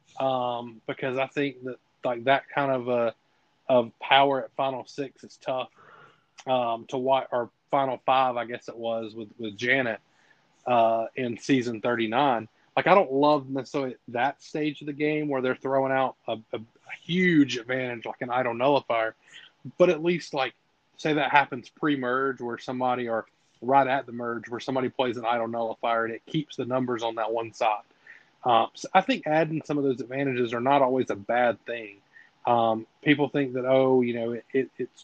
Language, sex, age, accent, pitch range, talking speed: English, male, 20-39, American, 120-140 Hz, 195 wpm